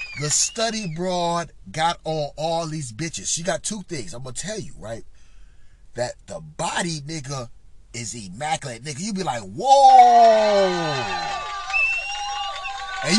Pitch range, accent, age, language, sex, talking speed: 180-270 Hz, American, 30-49, English, male, 135 wpm